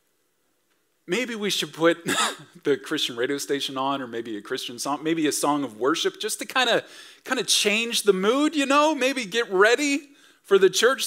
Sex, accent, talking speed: male, American, 195 wpm